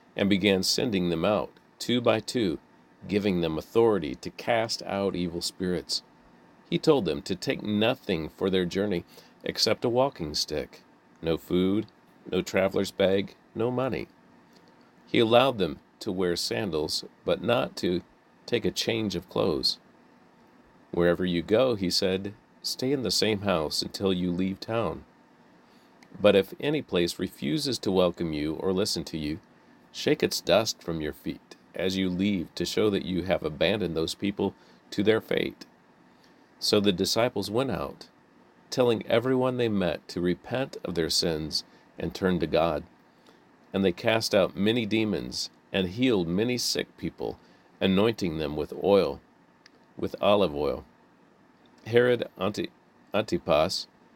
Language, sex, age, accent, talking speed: English, male, 40-59, American, 150 wpm